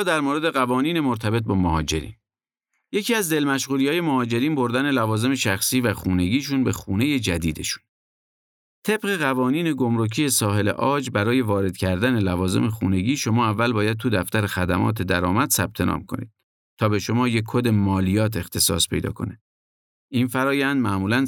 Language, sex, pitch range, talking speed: Persian, male, 95-130 Hz, 140 wpm